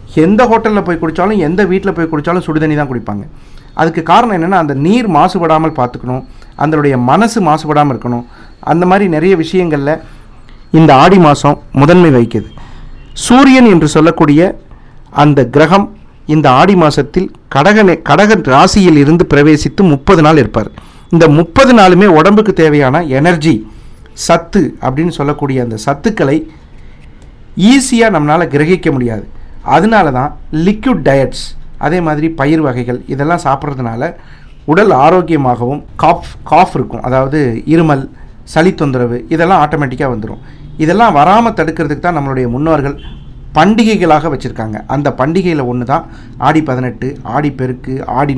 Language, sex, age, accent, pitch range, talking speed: Tamil, male, 50-69, native, 130-175 Hz, 125 wpm